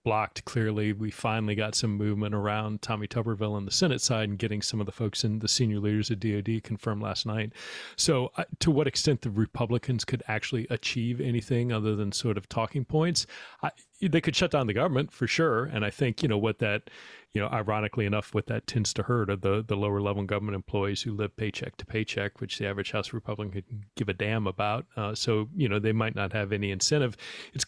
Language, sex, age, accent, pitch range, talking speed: English, male, 40-59, American, 105-125 Hz, 225 wpm